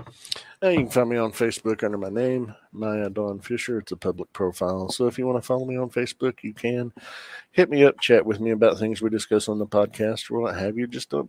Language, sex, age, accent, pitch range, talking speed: English, male, 50-69, American, 100-120 Hz, 250 wpm